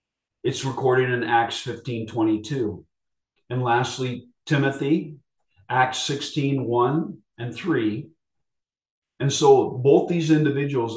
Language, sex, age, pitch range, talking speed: English, male, 40-59, 115-140 Hz, 105 wpm